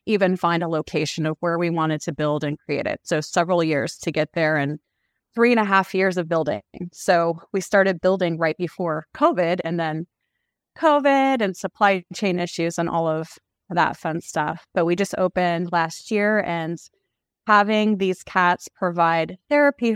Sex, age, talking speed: female, 30-49, 175 wpm